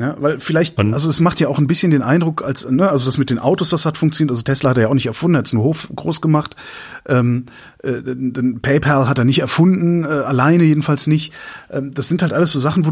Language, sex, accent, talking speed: German, male, German, 260 wpm